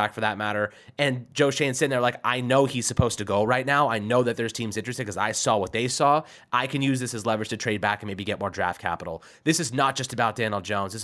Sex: male